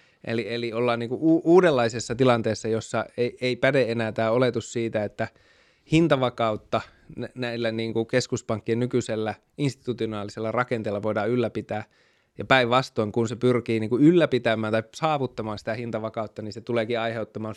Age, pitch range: 20-39, 110-125 Hz